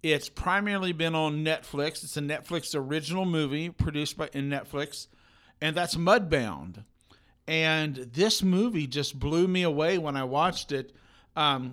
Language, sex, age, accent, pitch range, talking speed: English, male, 50-69, American, 135-175 Hz, 150 wpm